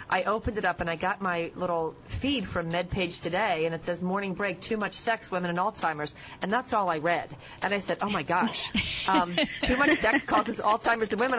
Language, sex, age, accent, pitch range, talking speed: English, female, 30-49, American, 175-215 Hz, 225 wpm